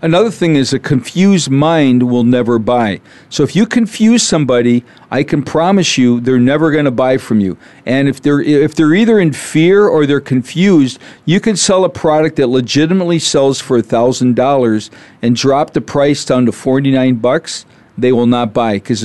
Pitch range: 125-160 Hz